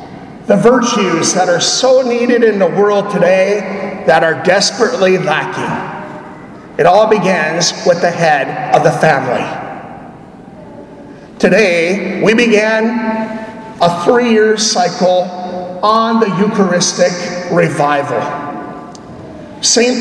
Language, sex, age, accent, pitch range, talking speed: English, male, 50-69, American, 185-235 Hz, 100 wpm